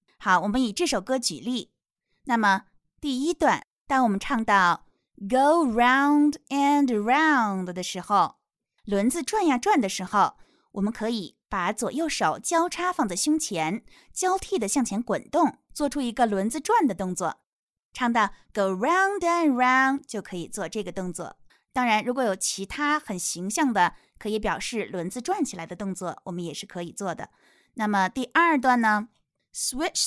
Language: Chinese